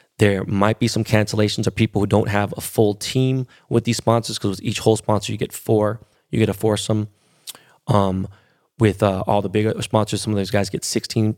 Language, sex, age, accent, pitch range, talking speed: English, male, 20-39, American, 100-115 Hz, 215 wpm